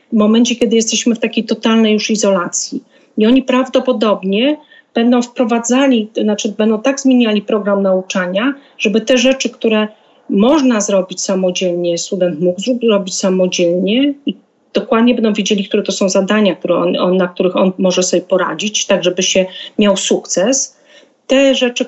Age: 40-59